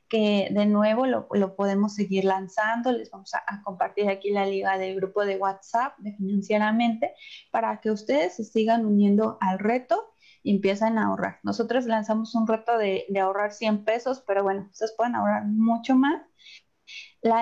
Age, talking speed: 20-39, 170 wpm